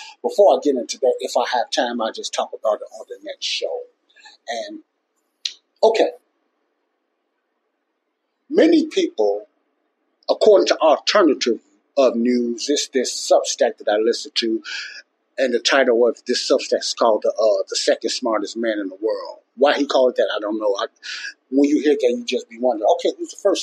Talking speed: 180 wpm